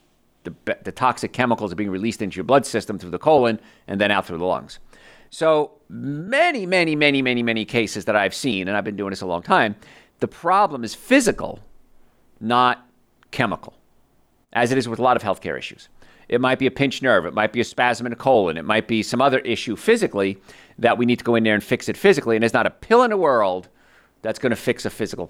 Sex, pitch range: male, 110-150 Hz